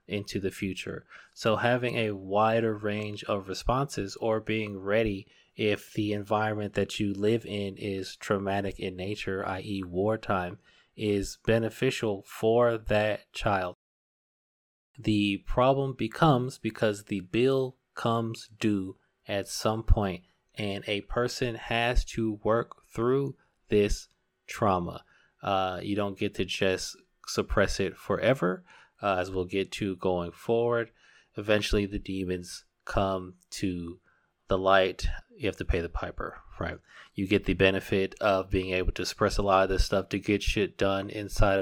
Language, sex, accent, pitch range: English, male, American, 95-115 Hz